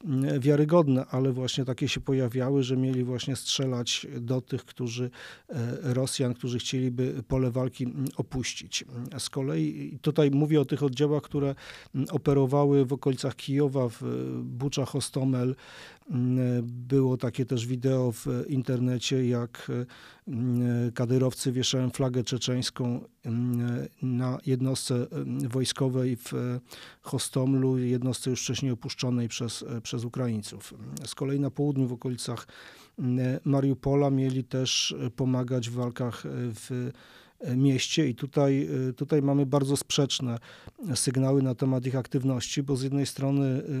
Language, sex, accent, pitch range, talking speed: Polish, male, native, 125-140 Hz, 120 wpm